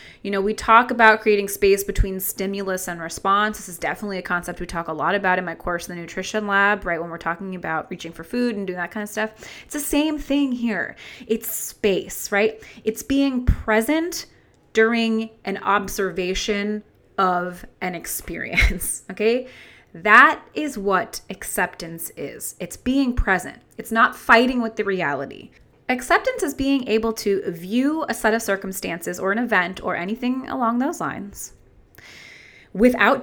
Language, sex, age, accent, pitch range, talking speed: English, female, 20-39, American, 185-240 Hz, 170 wpm